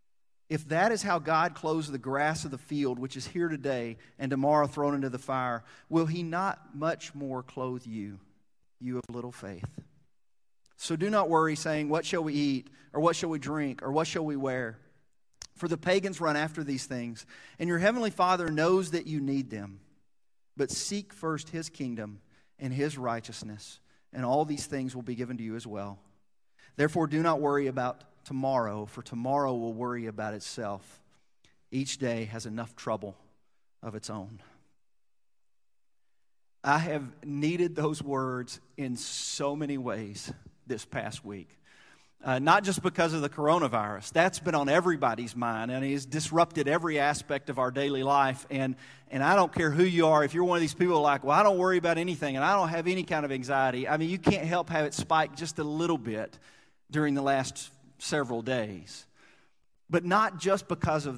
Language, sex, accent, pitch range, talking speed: English, male, American, 125-165 Hz, 185 wpm